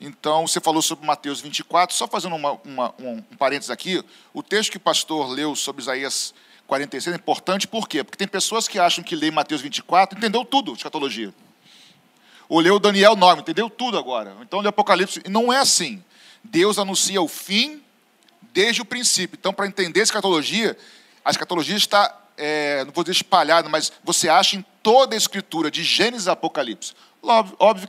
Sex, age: male, 40-59